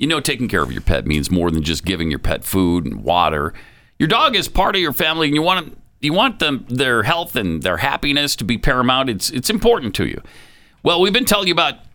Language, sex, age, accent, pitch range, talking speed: English, male, 50-69, American, 105-150 Hz, 250 wpm